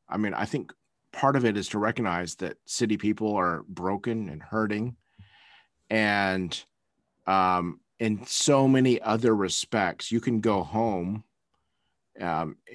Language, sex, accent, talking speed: English, male, American, 135 wpm